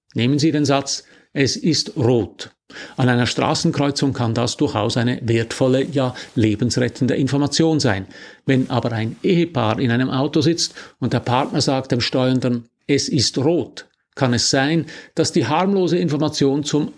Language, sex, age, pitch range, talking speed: German, male, 50-69, 120-150 Hz, 155 wpm